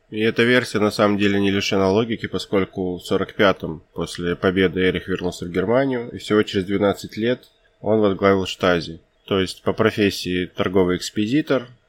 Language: Russian